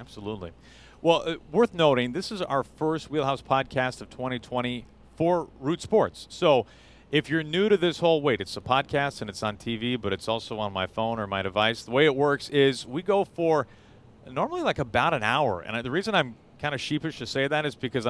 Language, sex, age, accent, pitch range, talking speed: English, male, 40-59, American, 115-150 Hz, 215 wpm